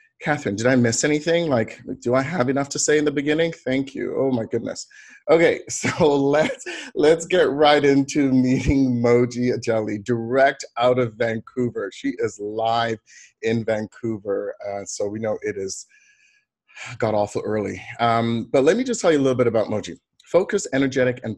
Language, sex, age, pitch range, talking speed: English, male, 30-49, 110-135 Hz, 175 wpm